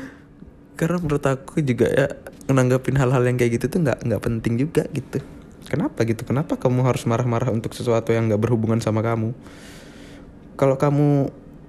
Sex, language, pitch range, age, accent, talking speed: male, Indonesian, 120-150 Hz, 20-39, native, 160 wpm